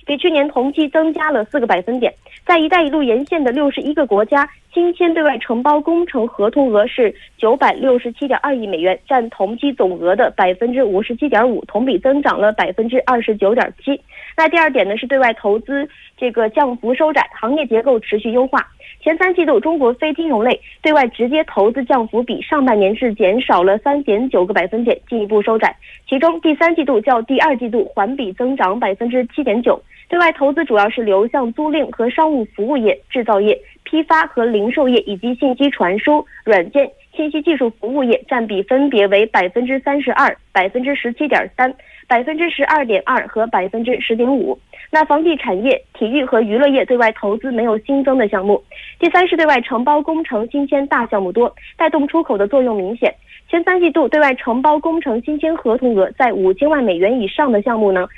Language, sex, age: Korean, female, 20-39